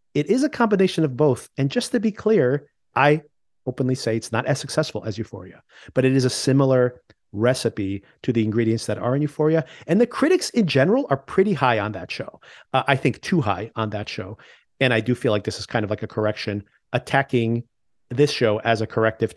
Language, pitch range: English, 110-150 Hz